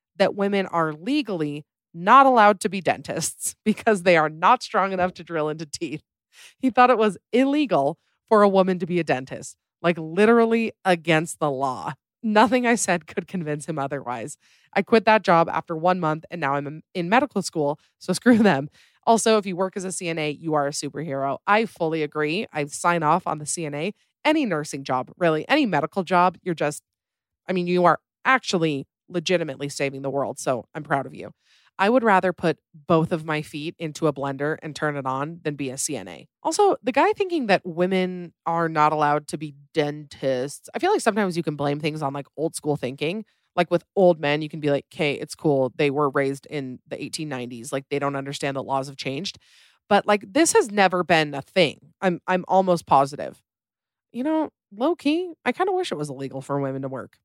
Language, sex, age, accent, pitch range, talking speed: English, female, 30-49, American, 145-200 Hz, 210 wpm